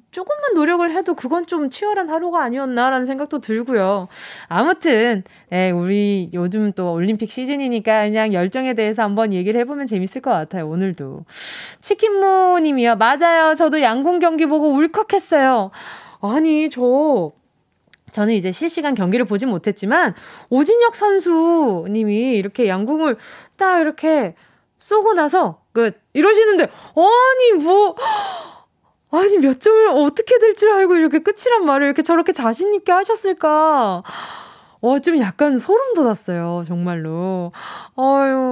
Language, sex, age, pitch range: Korean, female, 20-39, 220-335 Hz